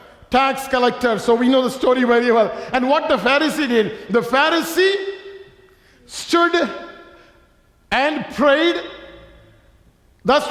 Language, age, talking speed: English, 50-69, 115 wpm